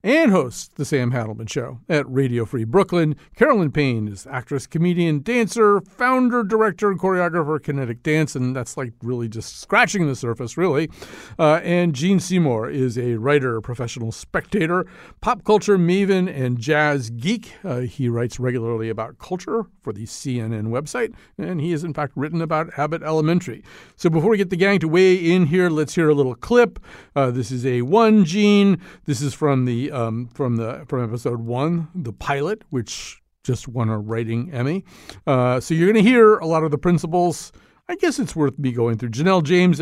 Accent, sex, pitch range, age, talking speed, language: American, male, 125-170 Hz, 50-69, 185 wpm, English